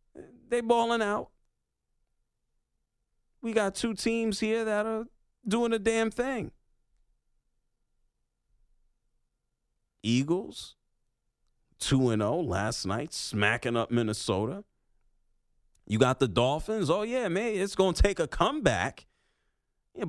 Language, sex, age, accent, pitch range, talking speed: English, male, 40-59, American, 120-200 Hz, 105 wpm